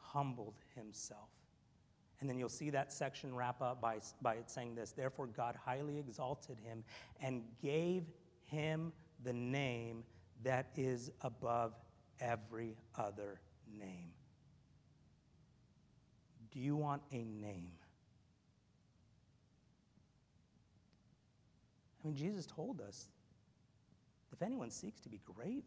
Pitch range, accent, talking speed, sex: 120-180 Hz, American, 110 wpm, male